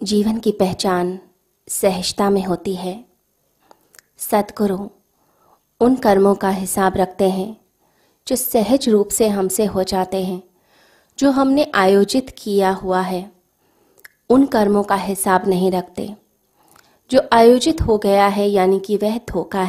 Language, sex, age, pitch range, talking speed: Hindi, female, 30-49, 195-235 Hz, 130 wpm